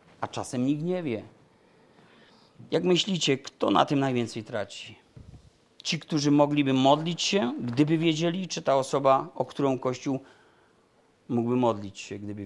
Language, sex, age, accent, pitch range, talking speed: Polish, male, 40-59, native, 120-150 Hz, 140 wpm